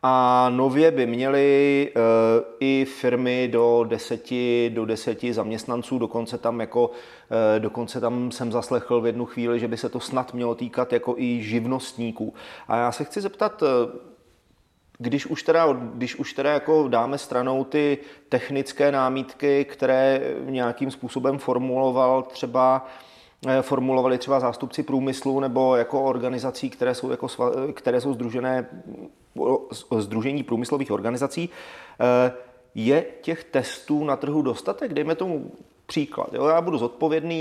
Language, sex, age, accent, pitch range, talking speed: Czech, male, 30-49, native, 120-140 Hz, 130 wpm